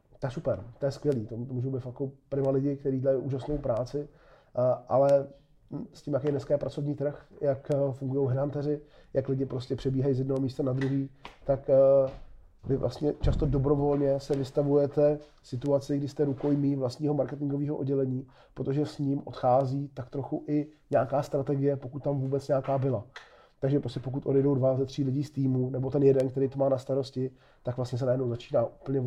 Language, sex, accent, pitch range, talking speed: Czech, male, native, 130-145 Hz, 180 wpm